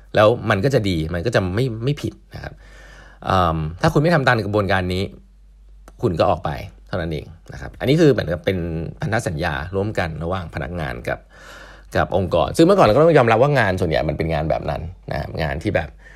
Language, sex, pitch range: English, male, 85-115 Hz